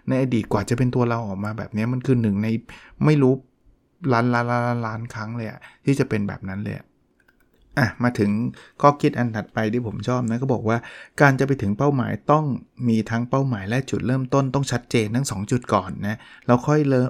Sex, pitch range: male, 110-135 Hz